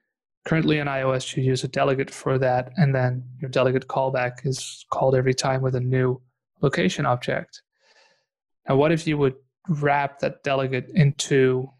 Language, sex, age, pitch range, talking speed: English, male, 20-39, 130-150 Hz, 165 wpm